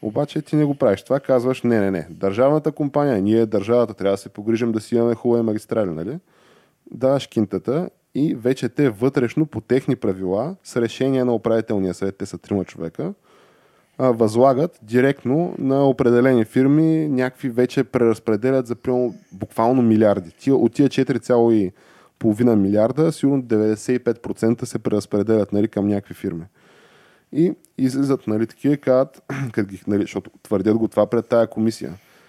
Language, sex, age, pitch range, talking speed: Bulgarian, male, 20-39, 100-125 Hz, 145 wpm